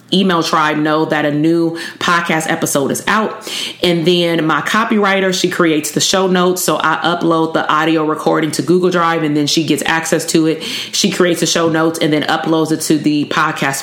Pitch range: 160-195 Hz